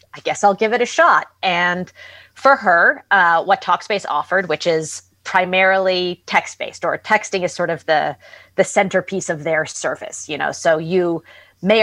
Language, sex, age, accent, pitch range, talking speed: English, female, 30-49, American, 155-190 Hz, 170 wpm